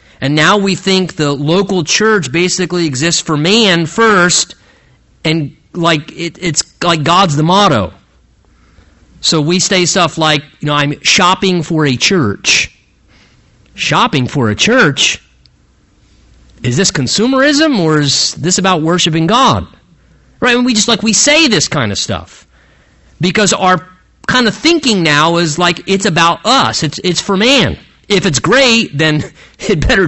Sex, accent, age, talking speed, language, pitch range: male, American, 40-59, 155 wpm, English, 150-215 Hz